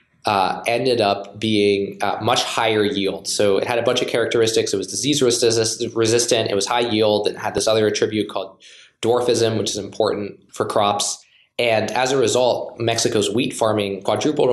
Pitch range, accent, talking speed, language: 100-115 Hz, American, 180 wpm, English